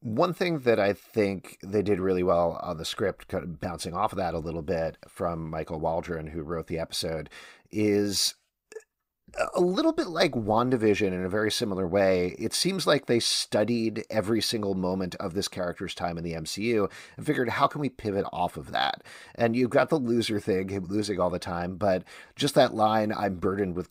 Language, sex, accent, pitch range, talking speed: English, male, American, 90-115 Hz, 205 wpm